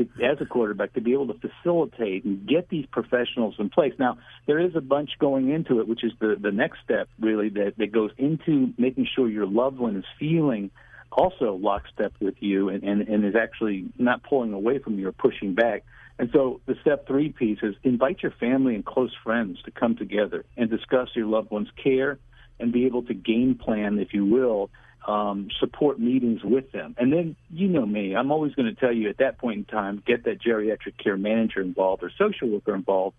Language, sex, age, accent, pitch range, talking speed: English, male, 50-69, American, 105-130 Hz, 215 wpm